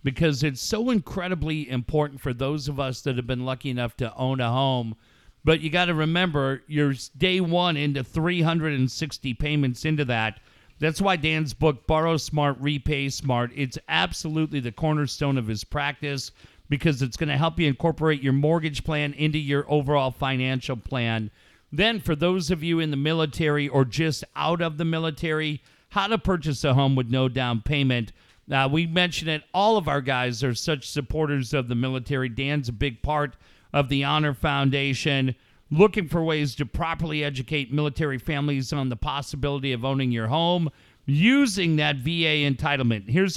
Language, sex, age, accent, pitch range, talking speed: English, male, 50-69, American, 130-160 Hz, 175 wpm